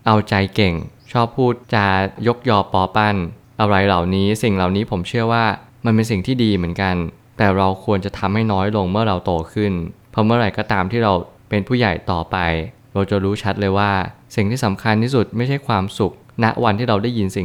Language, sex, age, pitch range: Thai, male, 20-39, 95-115 Hz